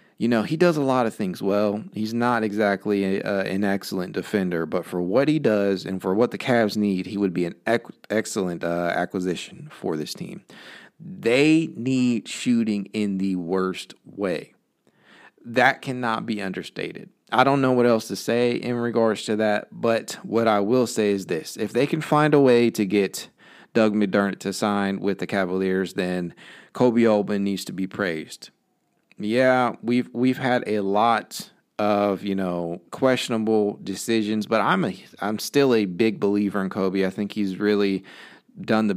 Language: English